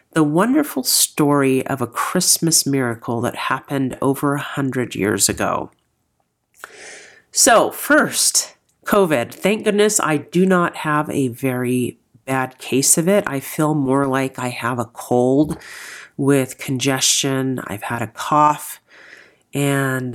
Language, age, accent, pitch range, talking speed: English, 40-59, American, 130-170 Hz, 130 wpm